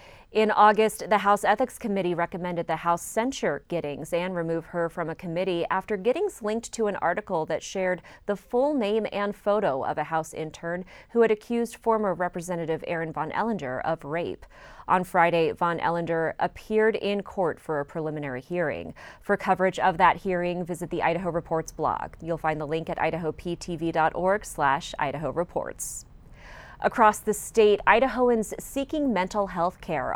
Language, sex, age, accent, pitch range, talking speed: English, female, 30-49, American, 170-215 Hz, 160 wpm